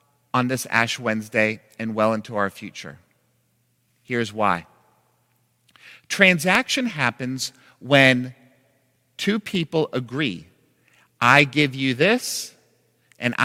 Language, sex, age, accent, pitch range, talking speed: English, male, 50-69, American, 120-170 Hz, 100 wpm